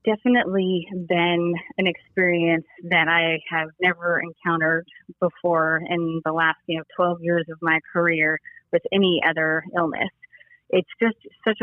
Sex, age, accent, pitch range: female, 30-49, American, 165-185 Hz